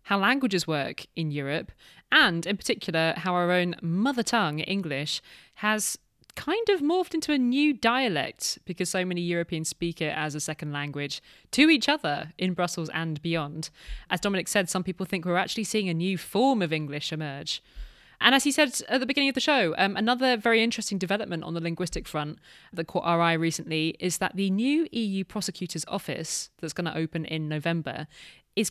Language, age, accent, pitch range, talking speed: English, 20-39, British, 165-235 Hz, 190 wpm